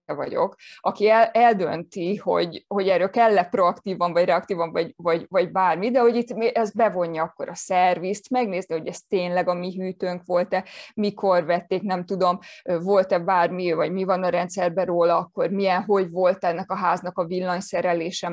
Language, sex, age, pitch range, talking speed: Hungarian, female, 20-39, 180-205 Hz, 170 wpm